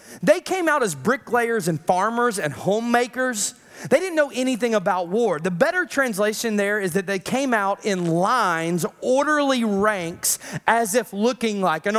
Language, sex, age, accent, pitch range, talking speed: English, male, 30-49, American, 205-275 Hz, 165 wpm